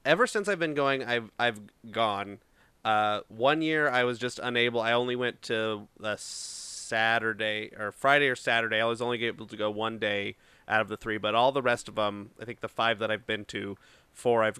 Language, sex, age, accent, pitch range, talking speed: English, male, 30-49, American, 105-125 Hz, 220 wpm